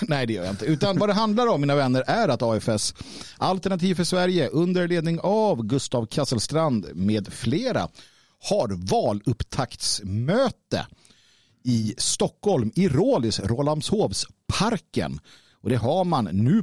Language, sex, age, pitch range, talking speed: Swedish, male, 50-69, 115-180 Hz, 130 wpm